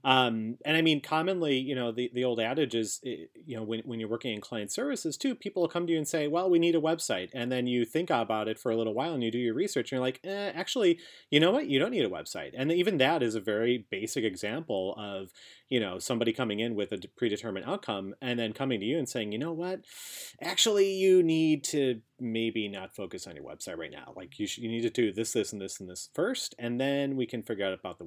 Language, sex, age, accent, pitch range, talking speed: English, male, 30-49, American, 110-155 Hz, 265 wpm